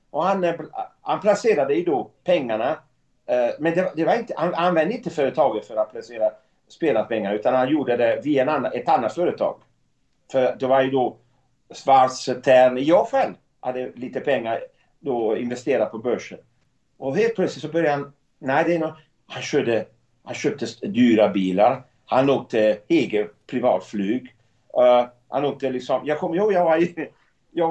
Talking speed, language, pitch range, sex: 175 wpm, English, 125-170 Hz, male